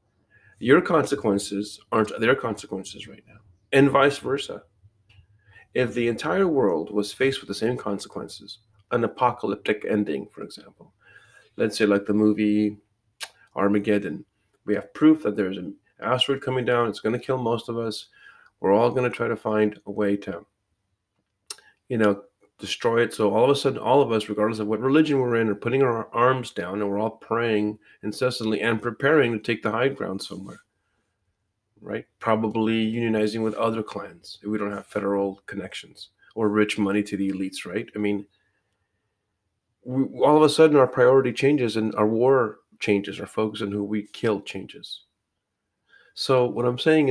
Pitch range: 100-125 Hz